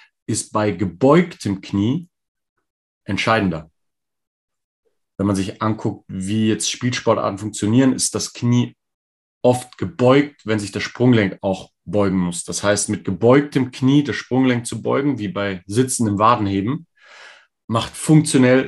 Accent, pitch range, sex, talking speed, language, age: German, 100-130 Hz, male, 130 wpm, German, 30-49